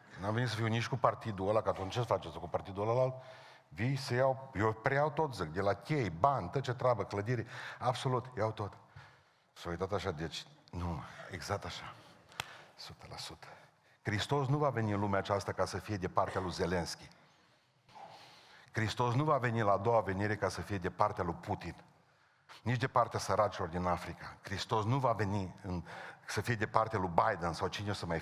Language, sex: Romanian, male